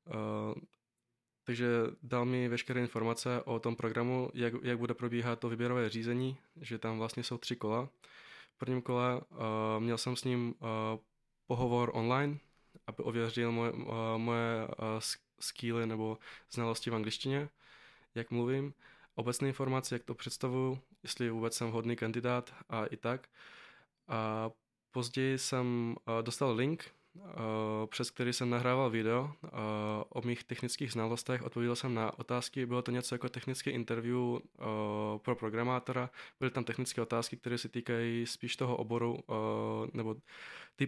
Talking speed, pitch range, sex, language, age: 150 wpm, 115-125 Hz, male, Czech, 20-39